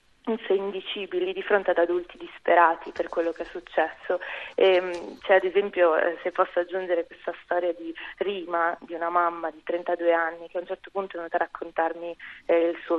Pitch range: 165-180 Hz